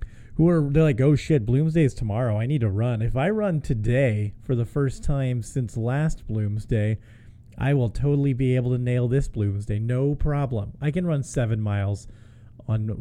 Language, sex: English, male